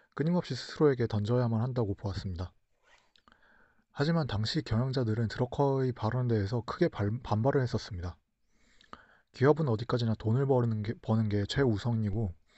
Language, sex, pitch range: Korean, male, 105-140 Hz